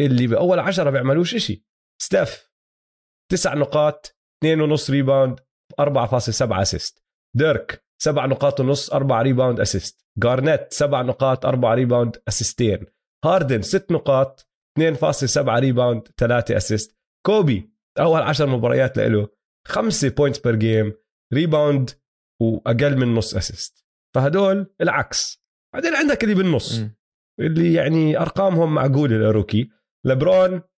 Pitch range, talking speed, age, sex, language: 120-160 Hz, 120 wpm, 30-49, male, Arabic